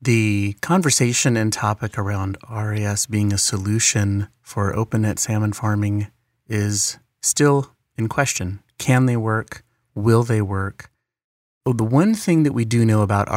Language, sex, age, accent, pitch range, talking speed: English, male, 30-49, American, 105-125 Hz, 150 wpm